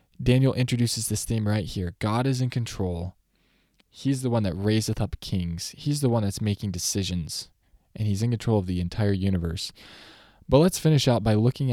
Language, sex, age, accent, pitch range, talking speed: English, male, 20-39, American, 100-125 Hz, 190 wpm